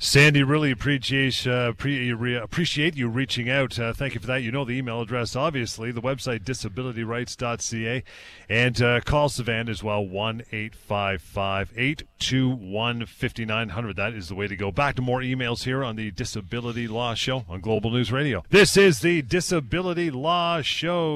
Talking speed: 145 wpm